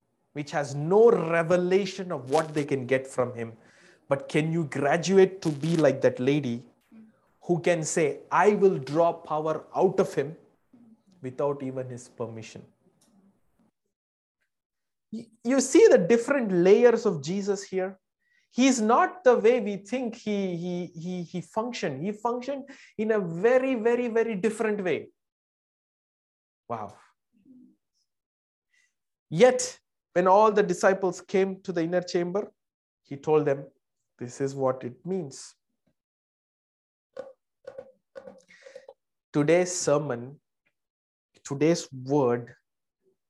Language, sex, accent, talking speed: English, male, Indian, 120 wpm